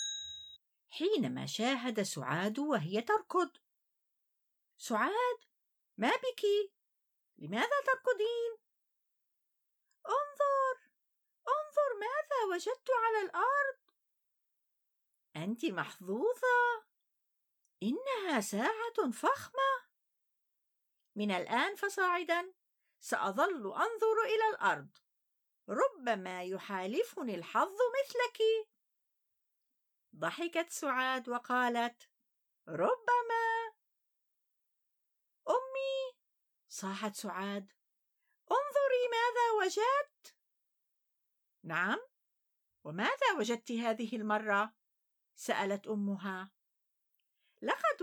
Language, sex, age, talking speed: Arabic, female, 50-69, 60 wpm